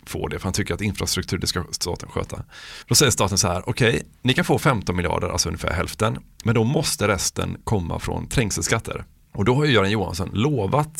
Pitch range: 95-125 Hz